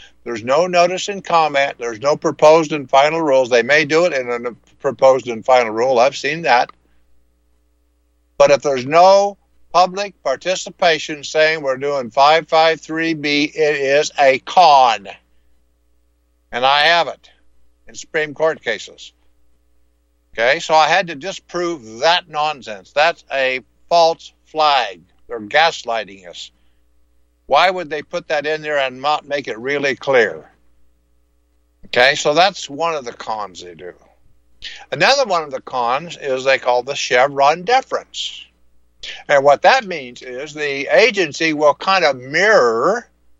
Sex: male